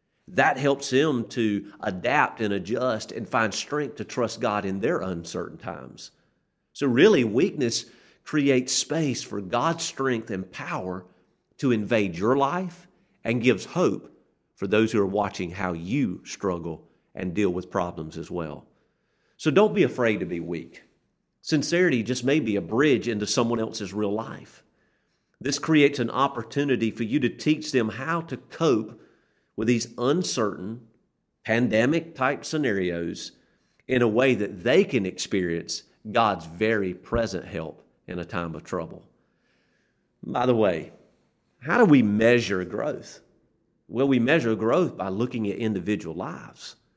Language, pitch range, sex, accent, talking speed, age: English, 100-140 Hz, male, American, 150 wpm, 50-69